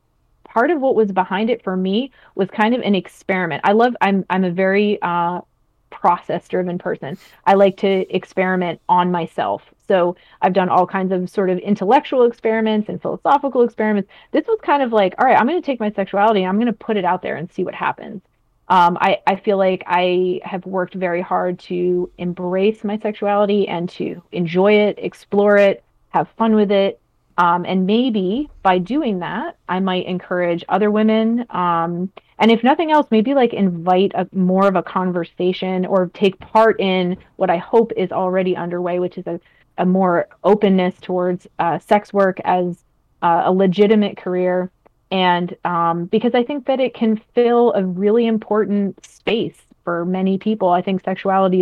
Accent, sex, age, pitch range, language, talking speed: American, female, 30-49, 180-215 Hz, English, 185 wpm